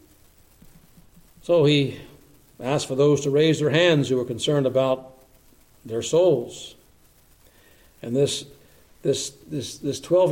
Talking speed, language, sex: 115 wpm, English, male